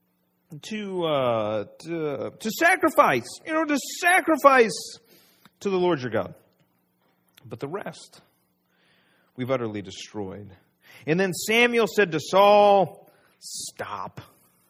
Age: 40-59